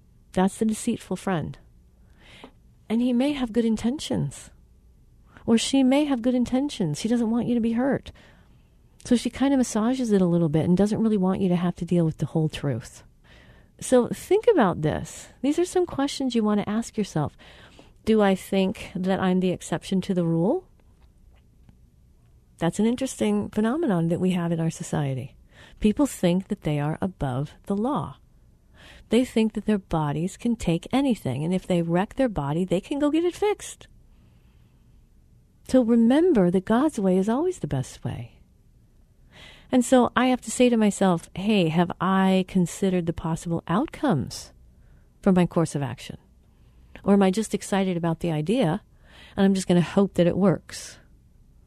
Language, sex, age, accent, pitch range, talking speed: English, female, 40-59, American, 170-235 Hz, 180 wpm